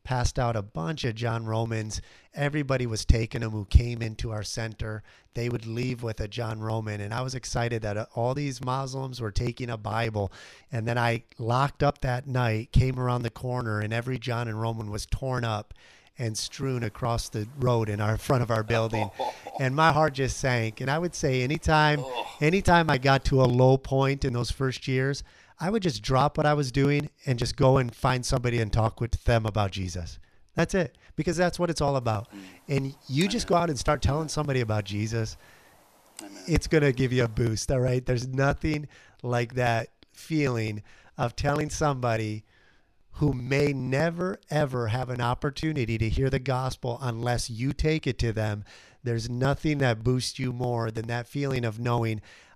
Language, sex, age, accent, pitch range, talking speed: English, male, 40-59, American, 115-135 Hz, 195 wpm